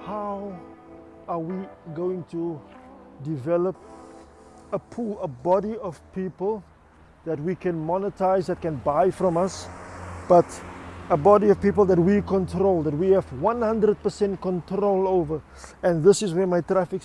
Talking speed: 150 wpm